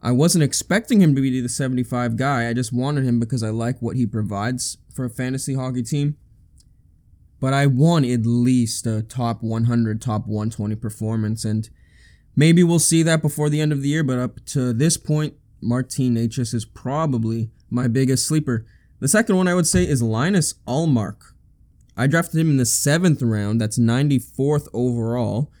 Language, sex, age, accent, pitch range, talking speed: English, male, 20-39, American, 115-145 Hz, 180 wpm